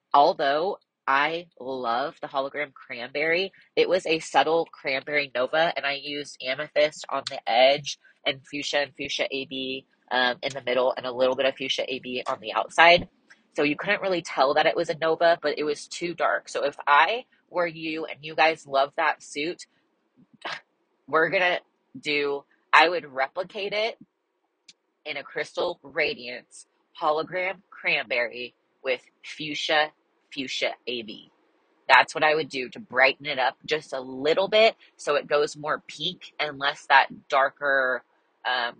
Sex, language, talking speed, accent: female, English, 165 wpm, American